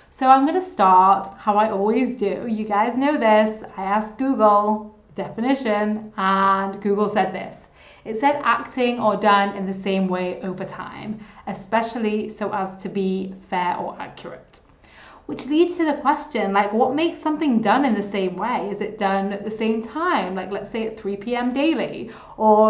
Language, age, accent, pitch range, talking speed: English, 20-39, British, 200-250 Hz, 180 wpm